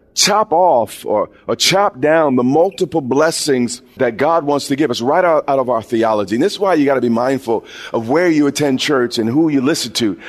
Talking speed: 235 wpm